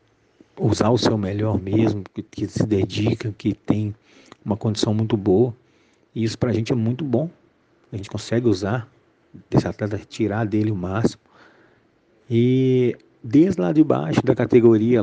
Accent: Brazilian